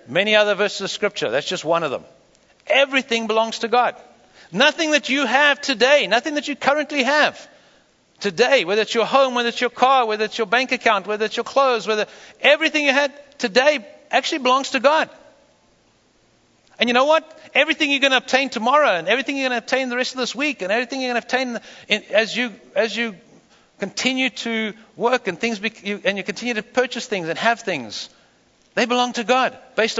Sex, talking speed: male, 210 wpm